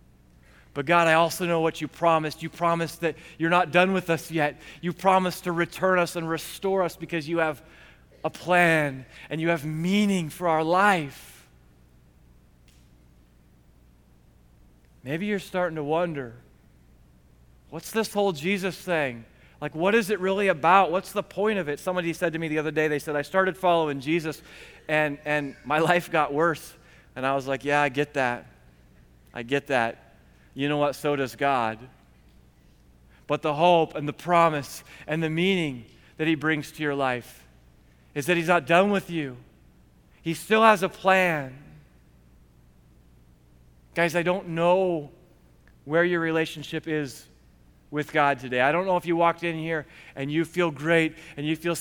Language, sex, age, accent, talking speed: English, male, 30-49, American, 170 wpm